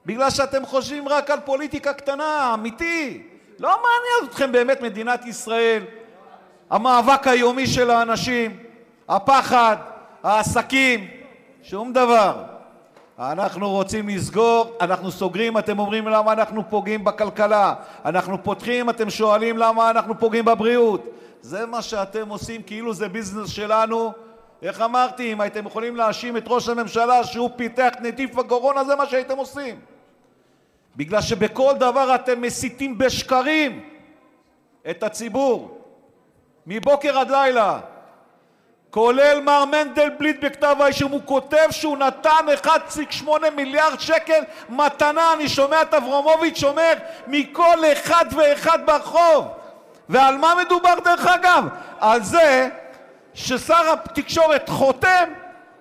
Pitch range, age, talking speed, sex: 230-300 Hz, 50-69, 115 wpm, male